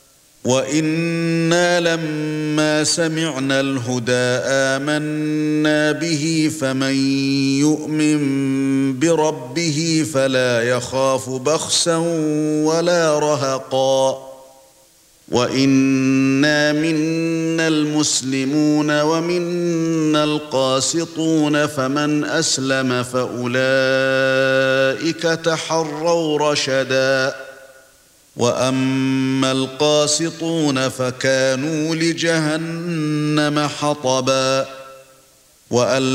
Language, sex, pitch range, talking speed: Arabic, male, 130-155 Hz, 50 wpm